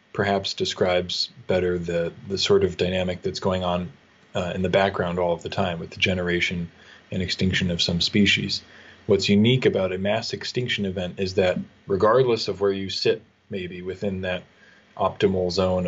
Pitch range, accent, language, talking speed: 90-100 Hz, American, English, 175 wpm